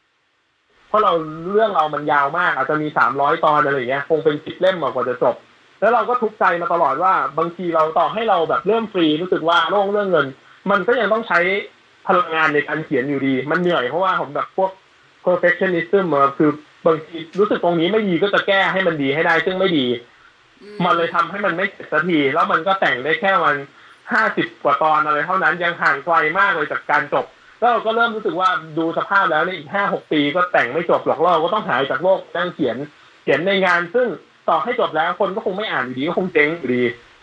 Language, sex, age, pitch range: Thai, male, 20-39, 155-190 Hz